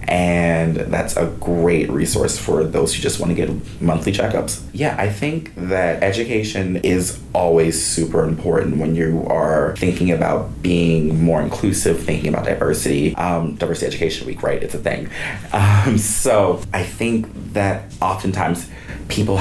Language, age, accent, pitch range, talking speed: English, 30-49, American, 85-95 Hz, 150 wpm